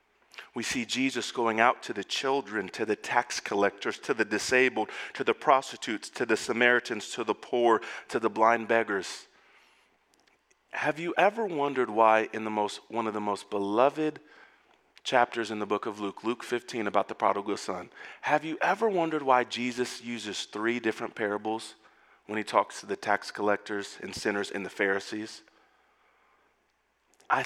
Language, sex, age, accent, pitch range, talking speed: English, male, 40-59, American, 105-140 Hz, 165 wpm